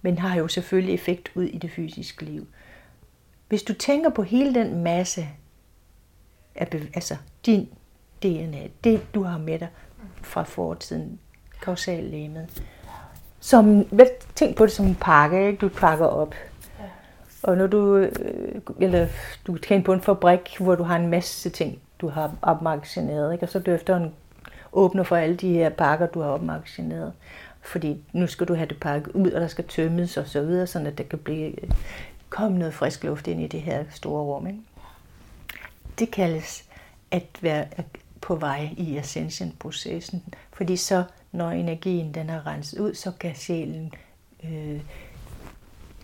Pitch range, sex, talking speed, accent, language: 155-185 Hz, female, 160 wpm, native, Danish